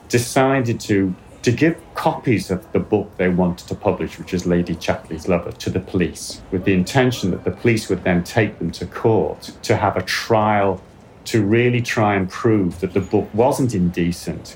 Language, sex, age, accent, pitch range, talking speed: English, male, 40-59, British, 90-115 Hz, 190 wpm